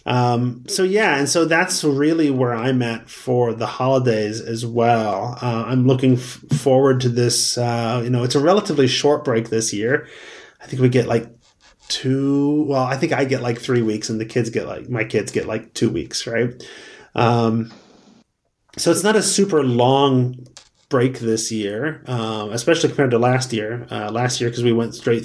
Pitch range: 115-140 Hz